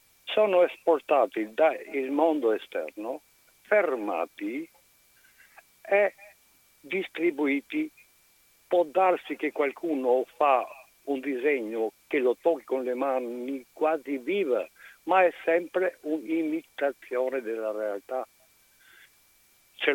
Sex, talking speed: male, 90 wpm